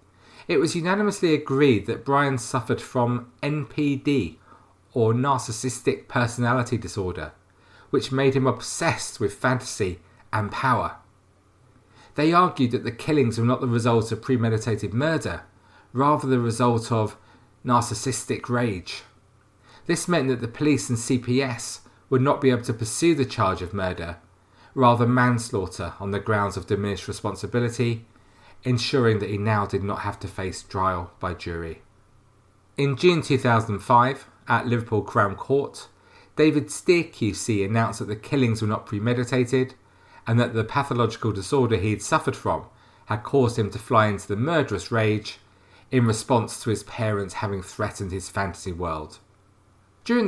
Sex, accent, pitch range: male, British, 100-130 Hz